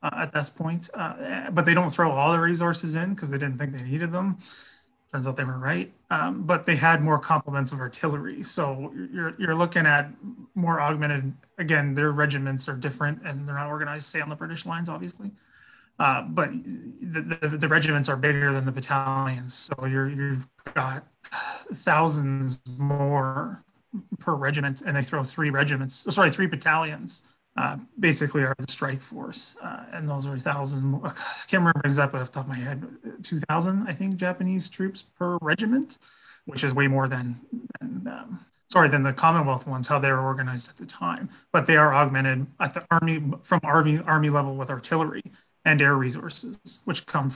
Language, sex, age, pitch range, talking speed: English, male, 30-49, 140-175 Hz, 185 wpm